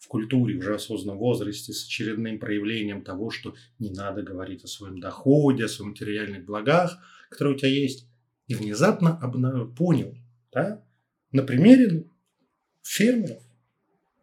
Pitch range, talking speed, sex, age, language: 110-165 Hz, 130 wpm, male, 30-49, Russian